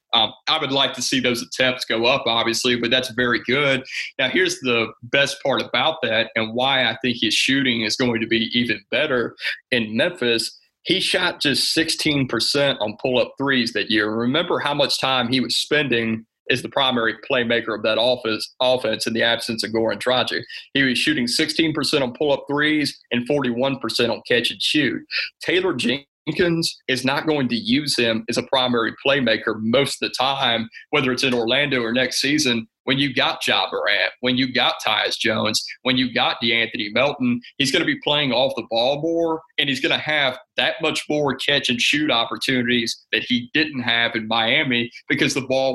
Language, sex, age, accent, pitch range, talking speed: English, male, 30-49, American, 115-140 Hz, 185 wpm